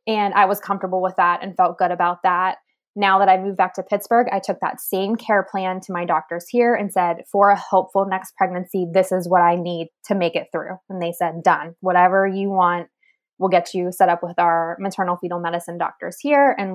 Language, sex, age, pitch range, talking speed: English, female, 20-39, 175-205 Hz, 230 wpm